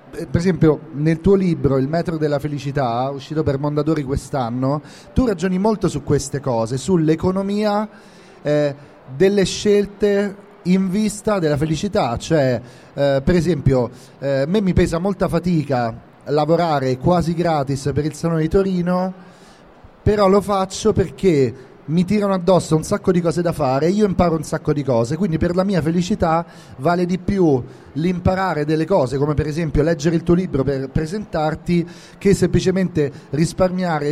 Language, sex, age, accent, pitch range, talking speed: Italian, male, 40-59, native, 150-190 Hz, 155 wpm